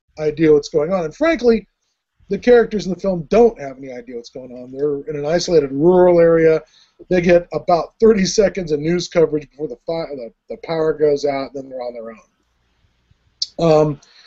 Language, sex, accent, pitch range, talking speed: English, male, American, 145-205 Hz, 200 wpm